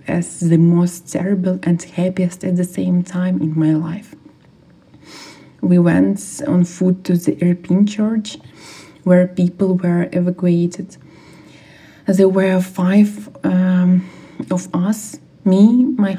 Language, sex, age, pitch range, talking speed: Ukrainian, female, 20-39, 175-195 Hz, 120 wpm